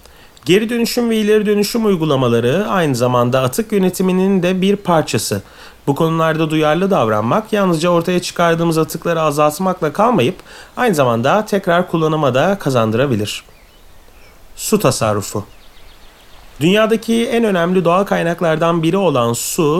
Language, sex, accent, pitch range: Turkish, male, native, 135-195 Hz